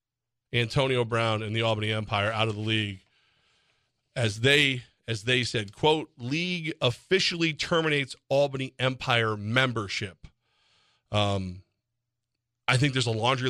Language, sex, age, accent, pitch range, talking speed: English, male, 40-59, American, 115-135 Hz, 125 wpm